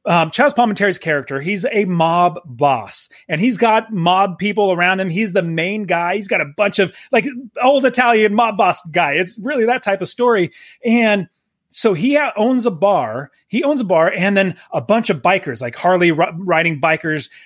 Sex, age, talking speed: male, 30-49, 195 wpm